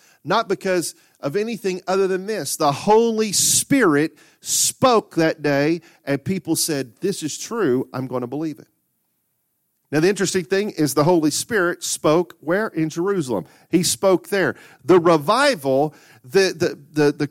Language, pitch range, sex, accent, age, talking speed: English, 155-205 Hz, male, American, 40-59, 155 wpm